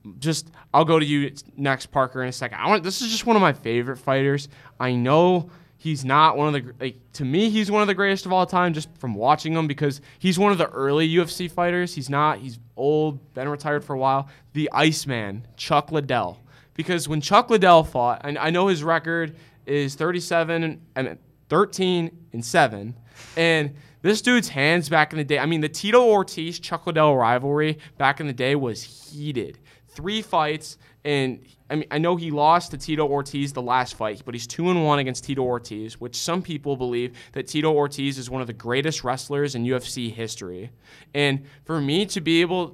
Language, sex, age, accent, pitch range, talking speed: English, male, 20-39, American, 130-160 Hz, 200 wpm